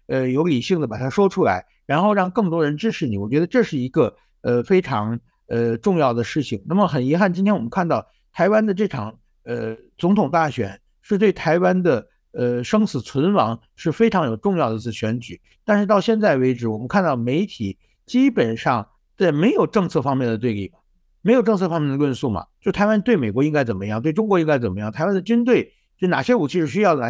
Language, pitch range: Chinese, 125-210 Hz